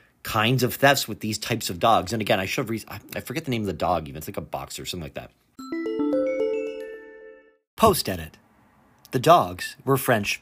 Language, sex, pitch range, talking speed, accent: English, male, 95-130 Hz, 200 wpm, American